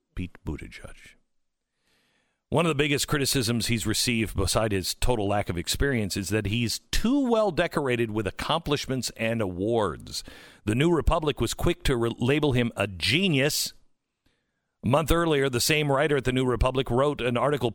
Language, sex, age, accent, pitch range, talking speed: English, male, 50-69, American, 110-155 Hz, 160 wpm